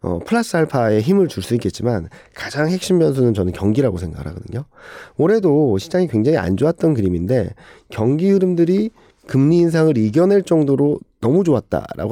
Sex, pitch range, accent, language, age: male, 105-160 Hz, native, Korean, 40-59